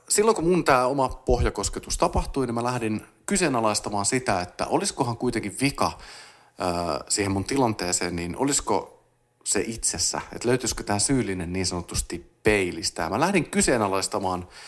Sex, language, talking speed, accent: male, Finnish, 140 wpm, native